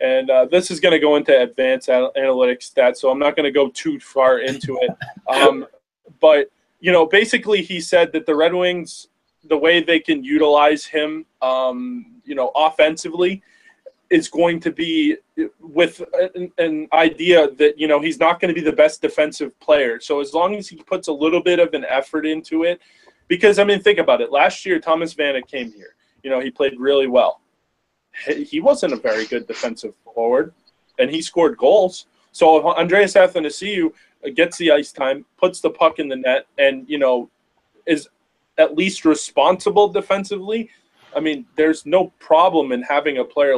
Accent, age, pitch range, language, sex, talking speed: American, 20-39, 145-200 Hz, English, male, 185 wpm